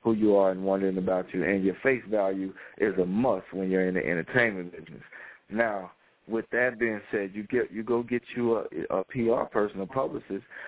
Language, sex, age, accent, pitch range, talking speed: English, male, 40-59, American, 100-115 Hz, 210 wpm